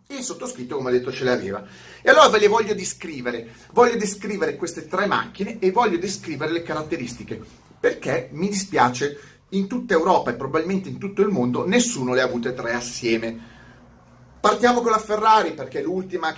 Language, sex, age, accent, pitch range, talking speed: Italian, male, 30-49, native, 125-210 Hz, 170 wpm